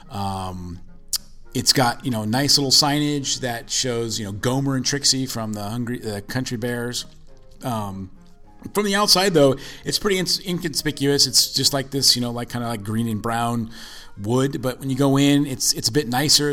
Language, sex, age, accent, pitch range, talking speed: English, male, 30-49, American, 100-130 Hz, 190 wpm